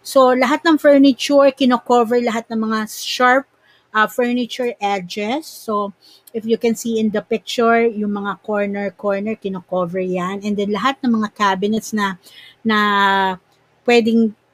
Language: Filipino